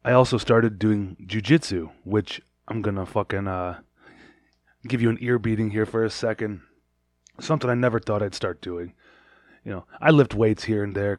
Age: 20-39